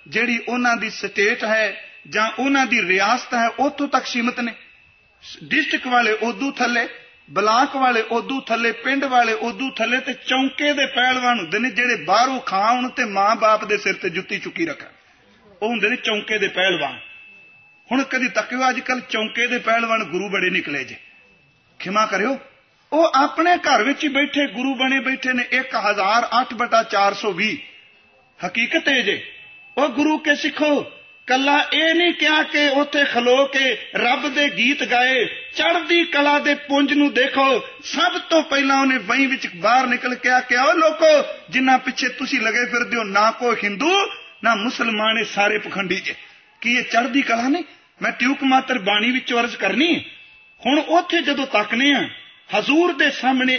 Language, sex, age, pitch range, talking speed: Punjabi, male, 40-59, 230-285 Hz, 165 wpm